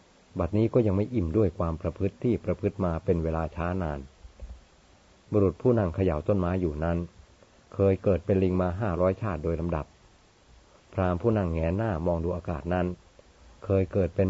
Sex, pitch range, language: male, 85-100 Hz, Thai